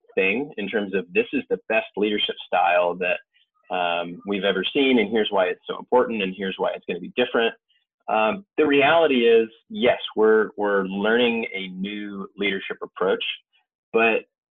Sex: male